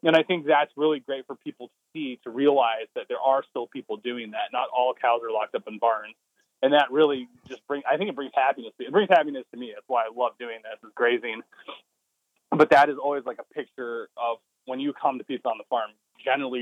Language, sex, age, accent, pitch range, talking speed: English, male, 20-39, American, 120-145 Hz, 245 wpm